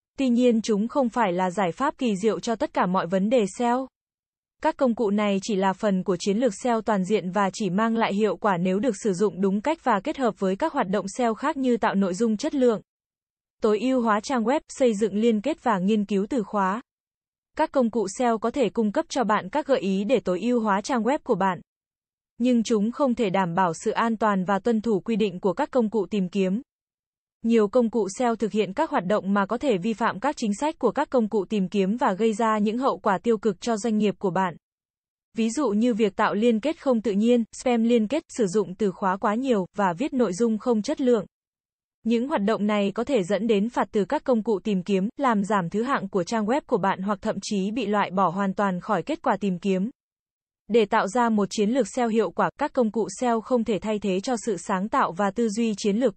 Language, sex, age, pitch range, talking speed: Vietnamese, female, 20-39, 200-245 Hz, 255 wpm